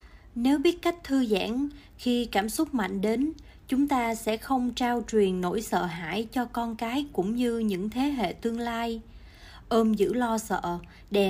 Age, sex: 20-39, female